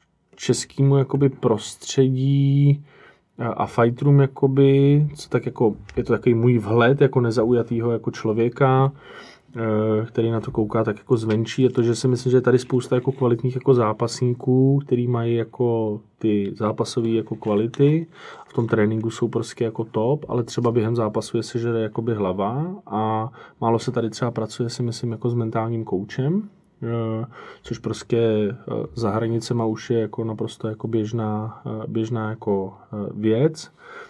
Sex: male